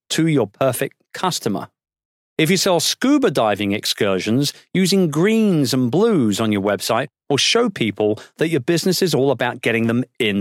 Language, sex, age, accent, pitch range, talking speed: English, male, 40-59, British, 130-180 Hz, 165 wpm